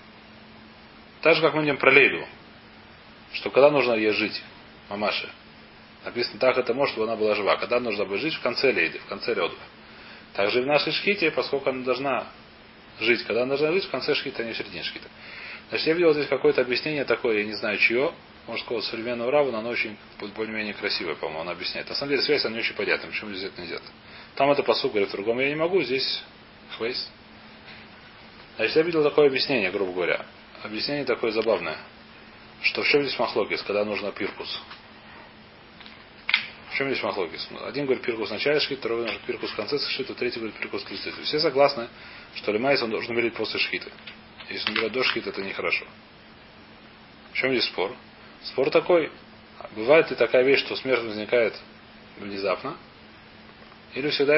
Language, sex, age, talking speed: Russian, male, 30-49, 185 wpm